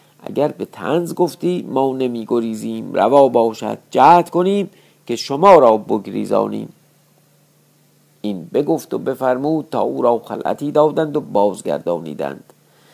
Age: 50-69